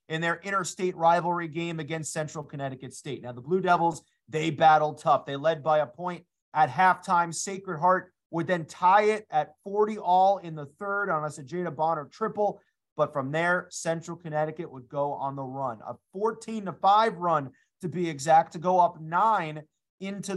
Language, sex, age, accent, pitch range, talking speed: English, male, 30-49, American, 160-205 Hz, 185 wpm